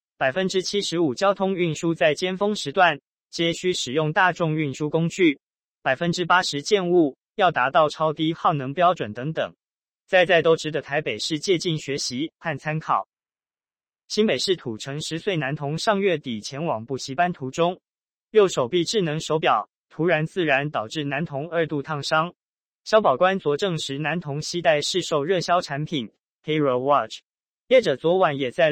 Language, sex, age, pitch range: Chinese, male, 20-39, 145-180 Hz